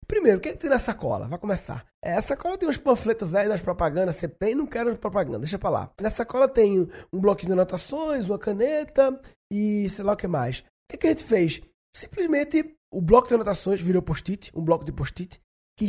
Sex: male